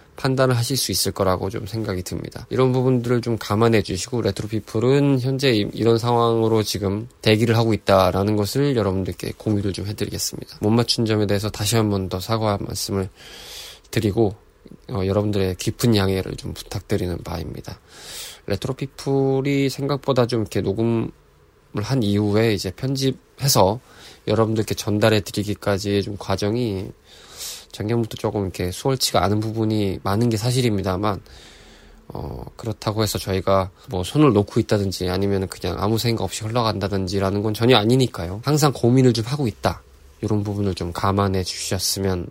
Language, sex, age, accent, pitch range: Korean, male, 20-39, native, 95-120 Hz